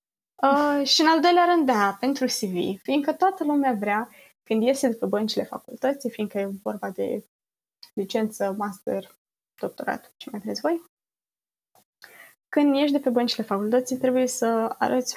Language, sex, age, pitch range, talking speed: Romanian, female, 20-39, 210-265 Hz, 155 wpm